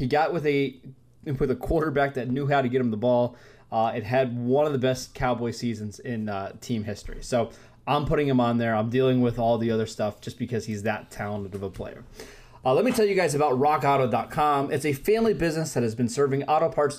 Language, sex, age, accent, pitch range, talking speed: English, male, 20-39, American, 120-155 Hz, 235 wpm